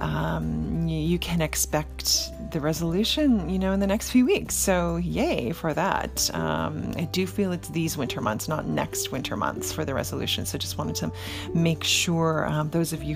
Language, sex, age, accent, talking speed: English, female, 40-59, American, 190 wpm